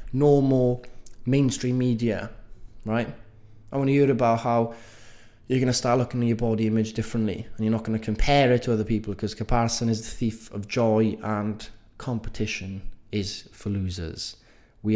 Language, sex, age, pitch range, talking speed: English, male, 20-39, 100-110 Hz, 160 wpm